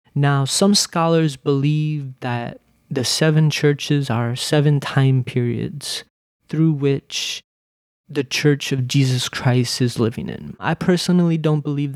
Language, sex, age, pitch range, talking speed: English, male, 20-39, 135-165 Hz, 130 wpm